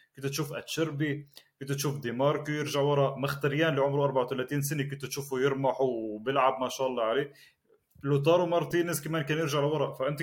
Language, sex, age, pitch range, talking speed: Arabic, male, 30-49, 140-175 Hz, 165 wpm